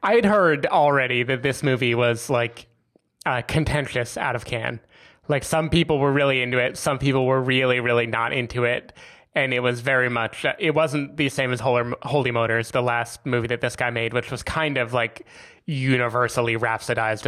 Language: English